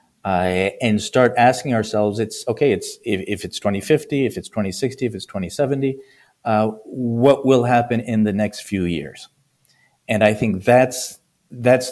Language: English